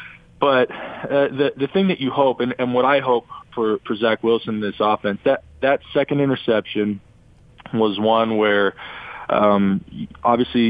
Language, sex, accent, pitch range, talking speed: English, male, American, 105-115 Hz, 165 wpm